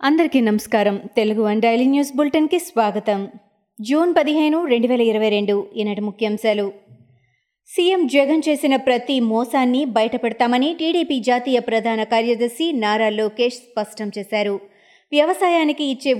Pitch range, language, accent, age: 225-295 Hz, Telugu, native, 20-39